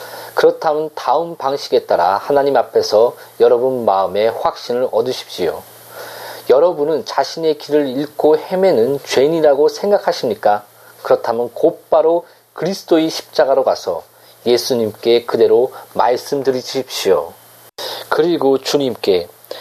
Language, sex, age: Korean, male, 40-59